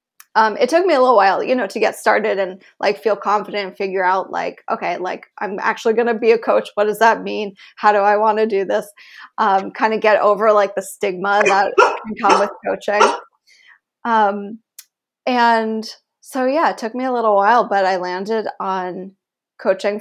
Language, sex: English, female